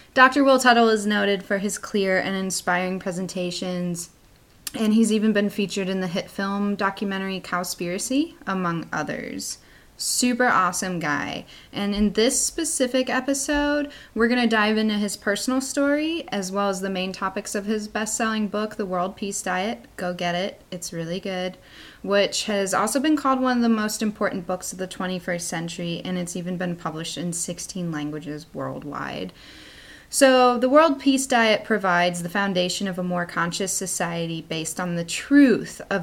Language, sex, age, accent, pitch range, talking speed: English, female, 10-29, American, 180-220 Hz, 170 wpm